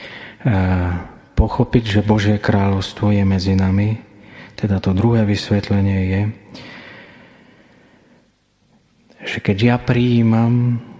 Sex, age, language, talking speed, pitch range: male, 40-59, Slovak, 95 wpm, 95-115 Hz